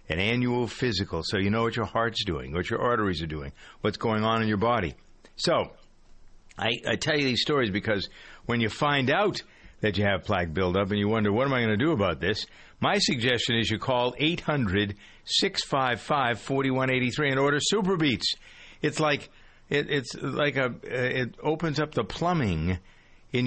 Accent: American